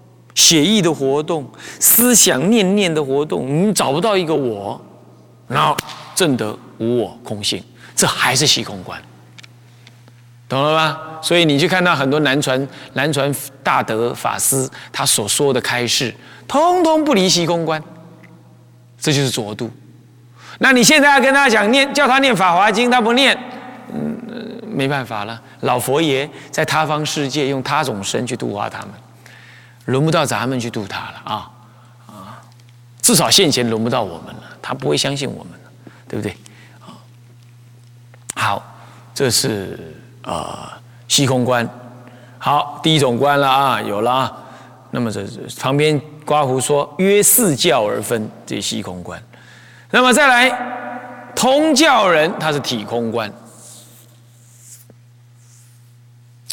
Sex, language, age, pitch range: male, Chinese, 30-49, 120-160 Hz